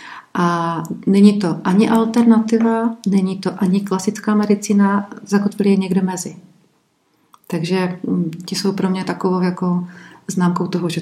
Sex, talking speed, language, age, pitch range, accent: female, 130 wpm, Czech, 40-59, 170-200 Hz, native